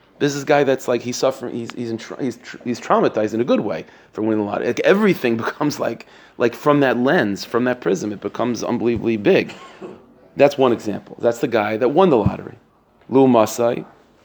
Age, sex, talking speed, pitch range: 30-49, male, 200 wpm, 110-135 Hz